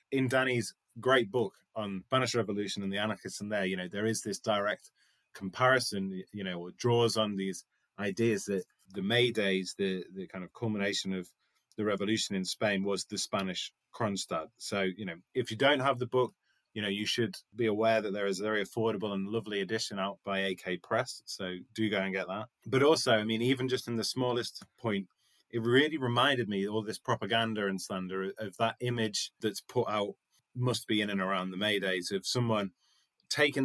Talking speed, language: 205 wpm, English